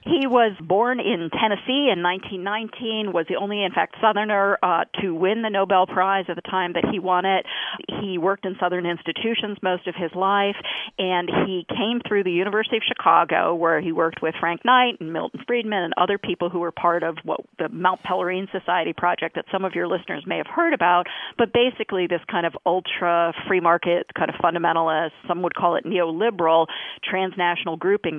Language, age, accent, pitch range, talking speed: English, 40-59, American, 170-215 Hz, 195 wpm